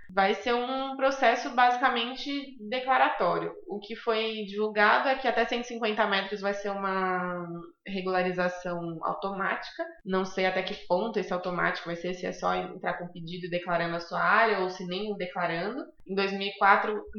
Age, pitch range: 20-39, 185-230 Hz